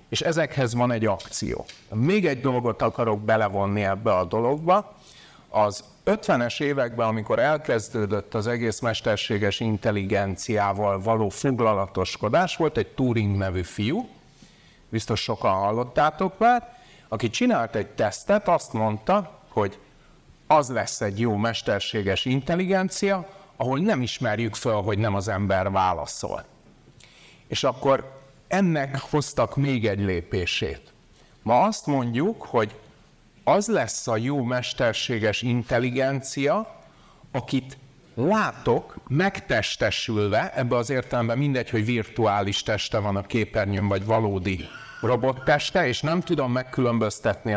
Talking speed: 115 wpm